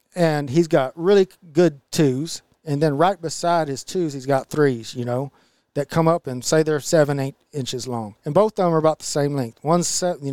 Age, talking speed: 40-59, 220 wpm